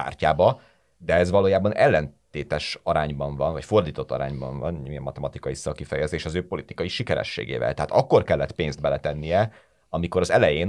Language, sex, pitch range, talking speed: Hungarian, male, 75-95 Hz, 145 wpm